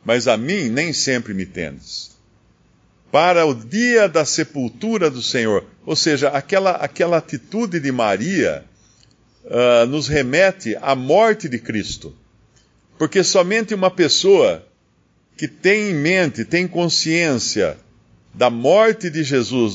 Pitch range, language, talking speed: 120-175 Hz, Portuguese, 130 wpm